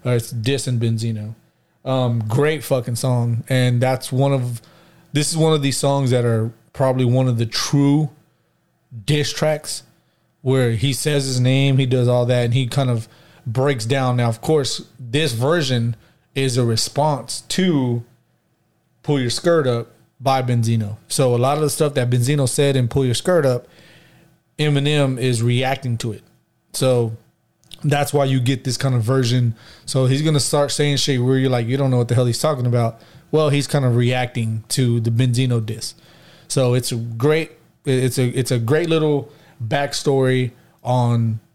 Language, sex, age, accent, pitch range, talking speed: English, male, 30-49, American, 120-140 Hz, 180 wpm